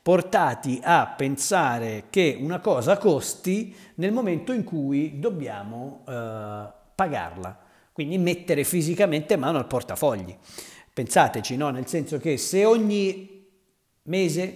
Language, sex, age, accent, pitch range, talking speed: Italian, male, 50-69, native, 130-175 Hz, 115 wpm